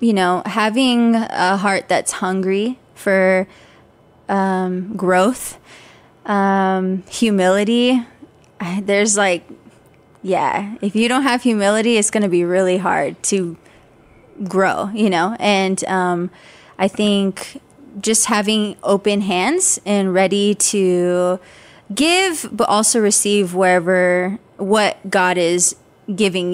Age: 20-39